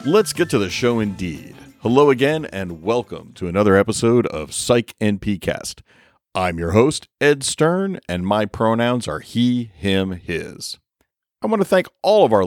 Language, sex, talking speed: English, male, 170 wpm